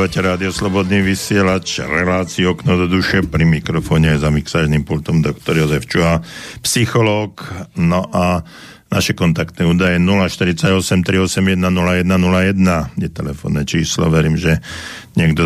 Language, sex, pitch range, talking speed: Slovak, male, 80-95 Hz, 110 wpm